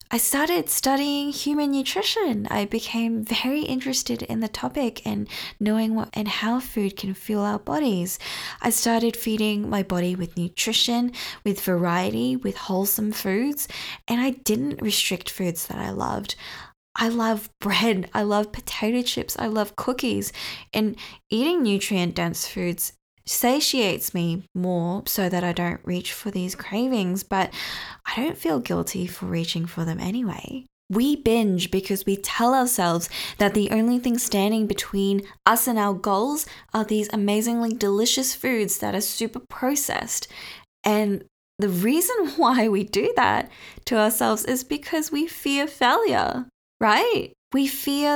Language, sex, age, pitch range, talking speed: English, female, 10-29, 195-245 Hz, 150 wpm